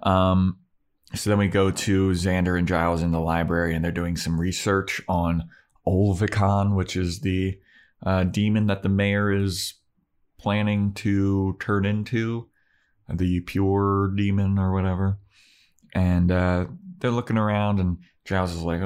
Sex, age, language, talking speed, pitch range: male, 30-49, English, 145 wpm, 85-100 Hz